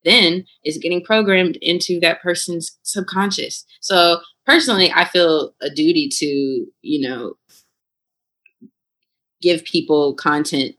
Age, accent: 20-39, American